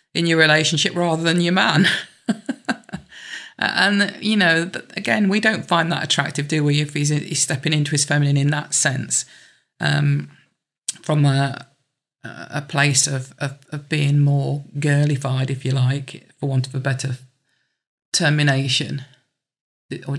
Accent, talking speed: British, 145 wpm